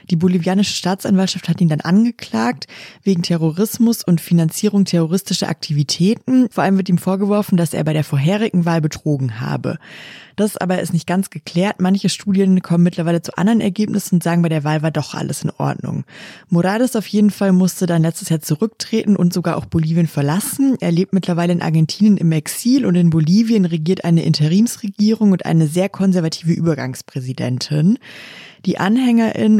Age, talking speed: 20-39, 170 wpm